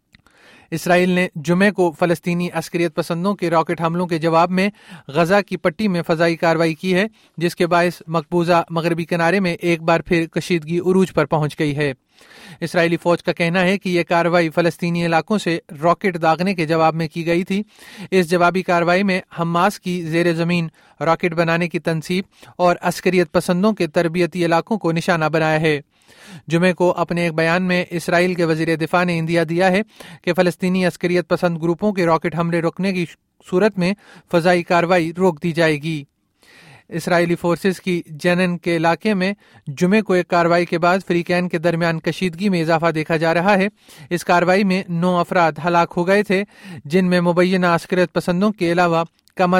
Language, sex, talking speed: Urdu, male, 180 wpm